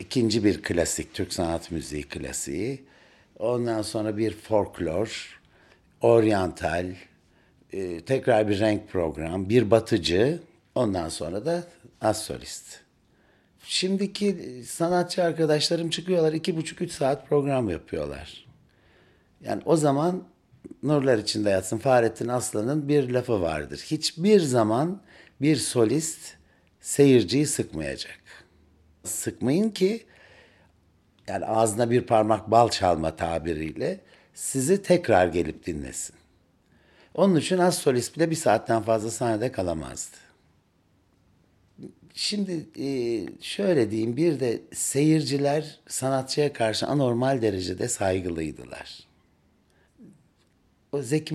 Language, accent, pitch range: Turkish, native, 90-145 Hz